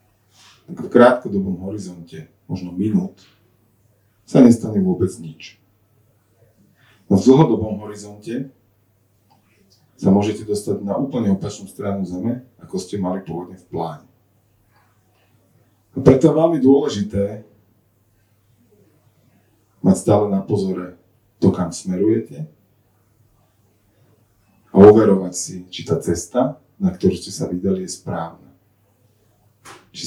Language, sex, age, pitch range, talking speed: Slovak, male, 40-59, 95-115 Hz, 110 wpm